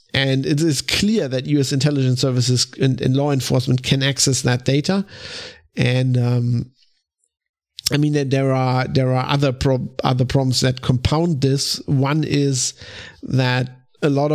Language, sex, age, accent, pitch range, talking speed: English, male, 50-69, German, 130-145 Hz, 155 wpm